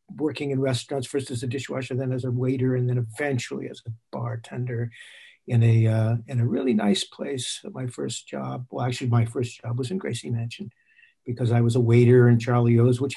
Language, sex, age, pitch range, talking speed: English, male, 60-79, 120-140 Hz, 210 wpm